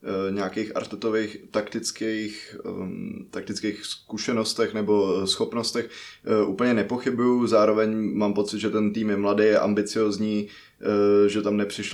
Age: 20-39